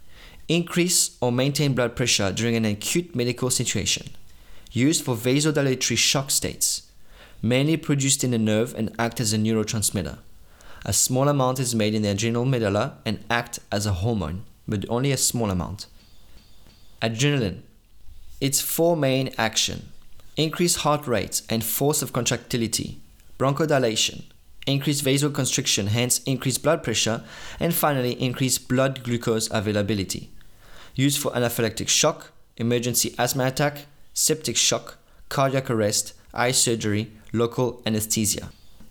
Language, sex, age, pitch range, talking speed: English, male, 30-49, 105-135 Hz, 130 wpm